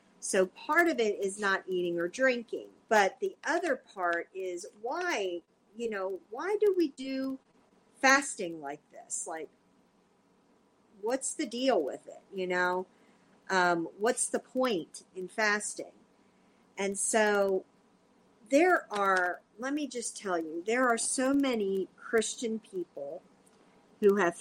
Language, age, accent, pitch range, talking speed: English, 50-69, American, 190-245 Hz, 135 wpm